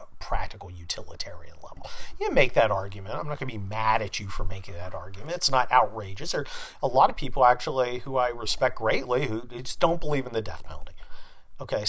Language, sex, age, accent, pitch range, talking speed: English, male, 40-59, American, 100-140 Hz, 205 wpm